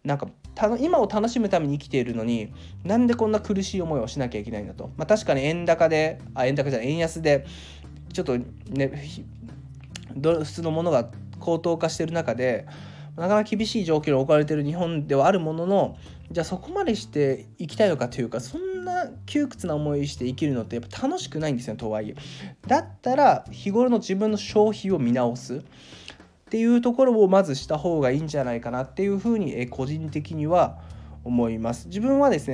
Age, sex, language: 20-39, male, Japanese